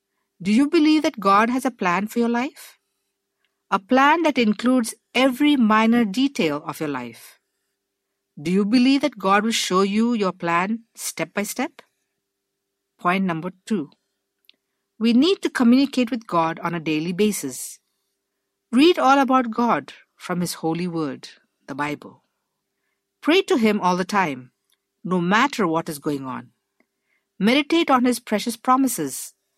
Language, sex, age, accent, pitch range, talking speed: English, female, 60-79, Indian, 160-240 Hz, 150 wpm